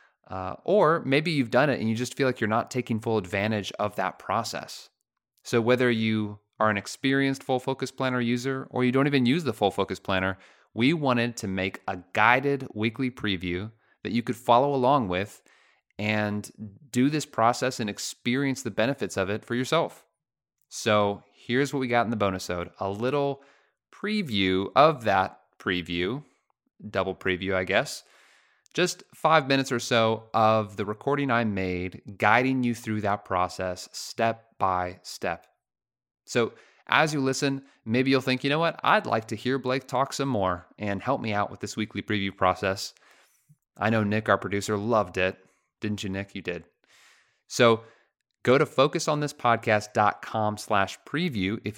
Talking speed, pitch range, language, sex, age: 170 wpm, 100-130 Hz, English, male, 30-49